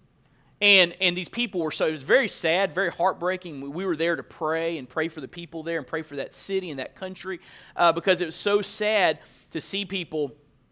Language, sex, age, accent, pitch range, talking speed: English, male, 30-49, American, 155-215 Hz, 225 wpm